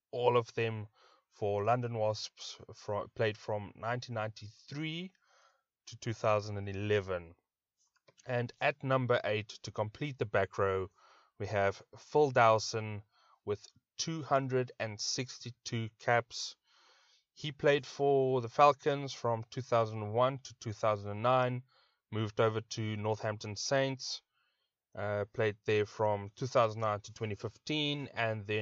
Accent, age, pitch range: South African, 20-39, 105-130 Hz